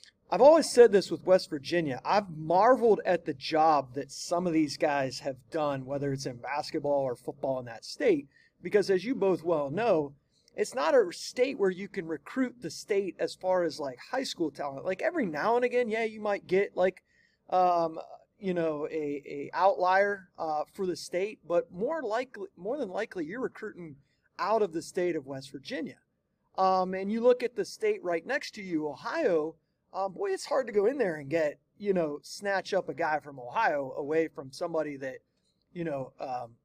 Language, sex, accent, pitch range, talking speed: English, male, American, 150-195 Hz, 200 wpm